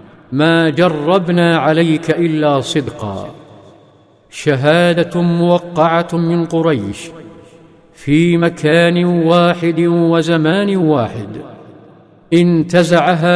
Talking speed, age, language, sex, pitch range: 65 wpm, 50-69, Arabic, male, 160-180 Hz